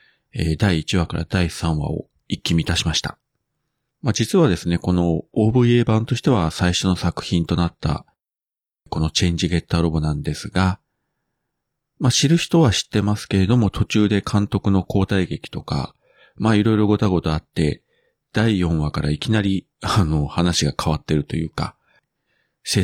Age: 40-59